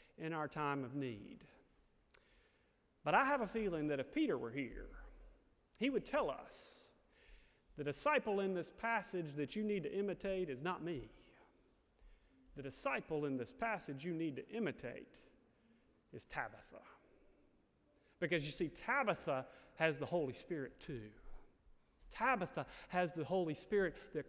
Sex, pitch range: male, 140-195 Hz